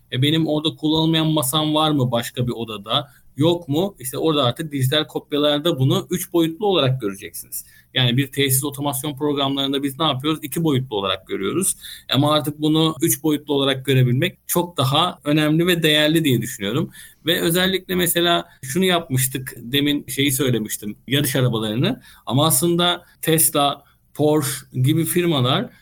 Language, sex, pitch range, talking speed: Turkish, male, 130-165 Hz, 145 wpm